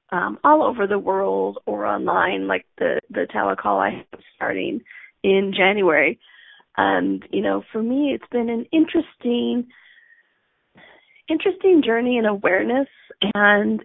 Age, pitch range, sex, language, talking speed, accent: 30-49, 195-270 Hz, female, English, 130 wpm, American